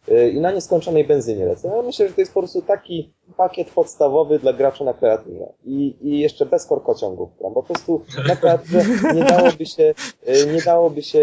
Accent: native